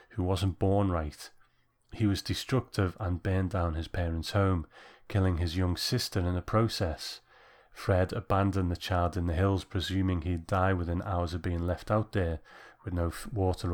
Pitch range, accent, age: 85-105 Hz, British, 30-49